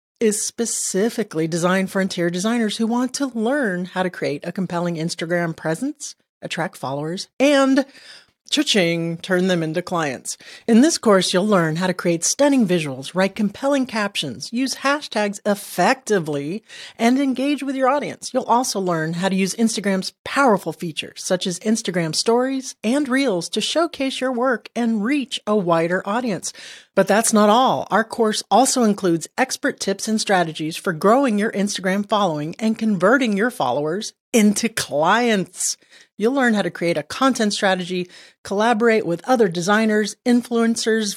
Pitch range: 180-235 Hz